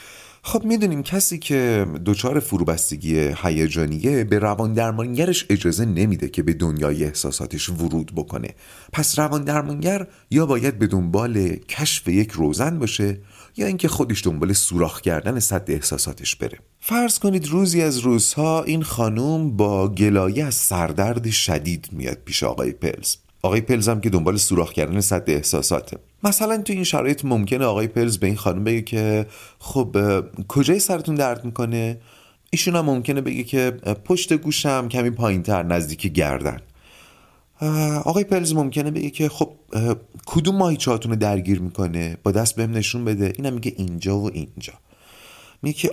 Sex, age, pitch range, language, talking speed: male, 30-49, 95-150 Hz, Persian, 150 wpm